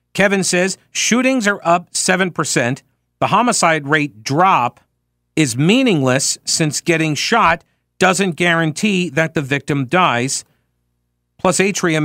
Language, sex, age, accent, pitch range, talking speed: English, male, 50-69, American, 110-160 Hz, 115 wpm